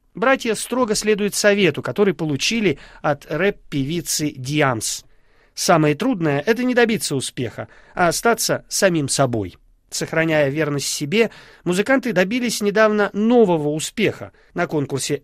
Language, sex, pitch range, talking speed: Russian, male, 145-210 Hz, 115 wpm